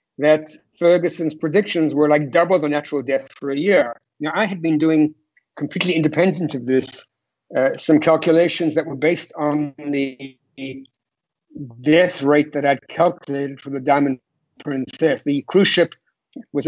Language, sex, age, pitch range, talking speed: English, male, 60-79, 140-170 Hz, 150 wpm